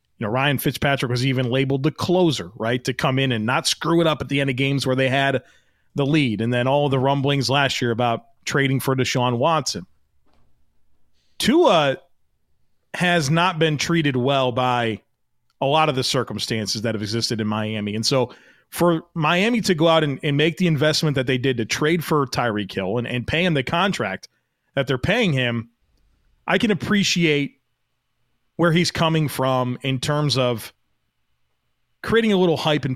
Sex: male